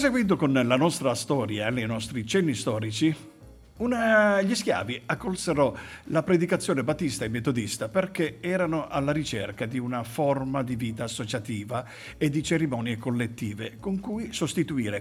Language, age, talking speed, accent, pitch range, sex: Italian, 50-69, 145 wpm, native, 115-165 Hz, male